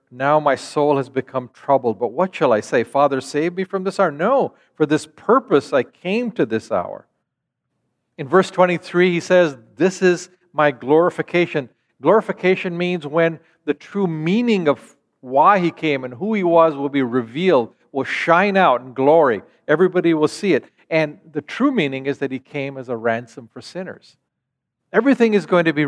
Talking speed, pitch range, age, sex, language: 185 wpm, 130-180 Hz, 50-69, male, English